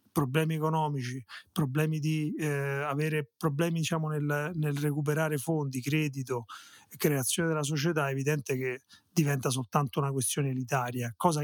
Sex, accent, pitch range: male, native, 135-160 Hz